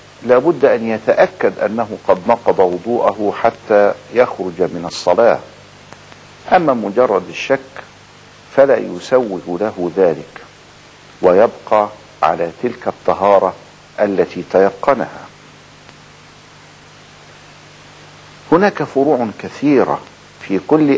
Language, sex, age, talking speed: Arabic, male, 50-69, 85 wpm